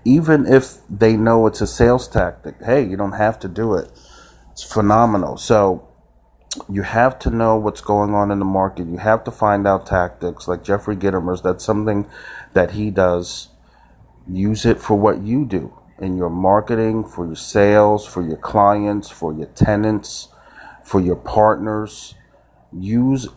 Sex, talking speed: male, 165 wpm